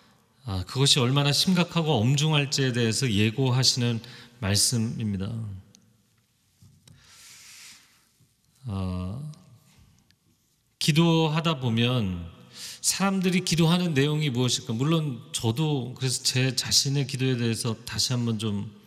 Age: 30-49